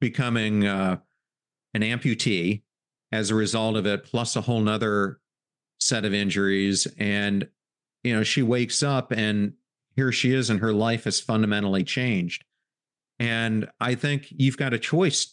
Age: 40-59